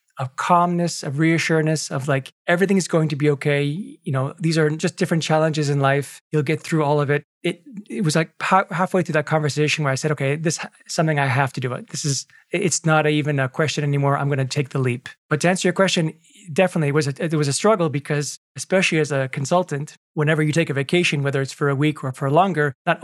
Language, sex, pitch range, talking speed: English, male, 140-165 Hz, 245 wpm